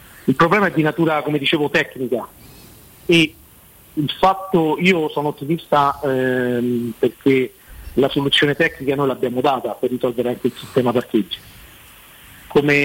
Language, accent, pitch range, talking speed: Italian, native, 130-150 Hz, 135 wpm